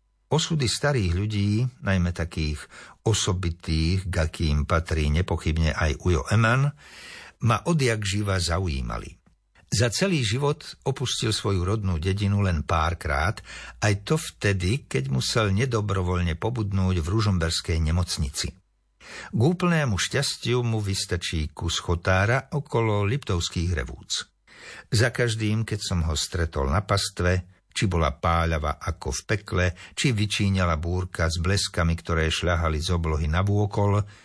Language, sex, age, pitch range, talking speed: Slovak, male, 60-79, 85-115 Hz, 125 wpm